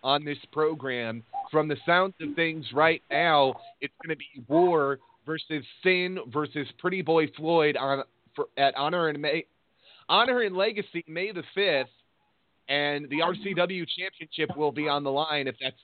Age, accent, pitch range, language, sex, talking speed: 30-49, American, 125-150 Hz, English, male, 165 wpm